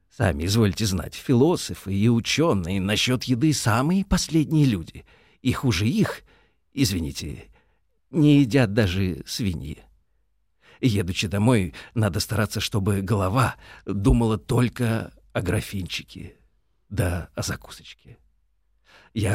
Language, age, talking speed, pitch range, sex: Russian, 50-69, 100 wpm, 95-130 Hz, male